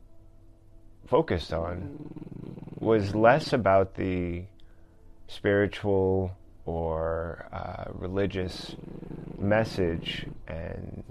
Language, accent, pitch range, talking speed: English, American, 90-110 Hz, 65 wpm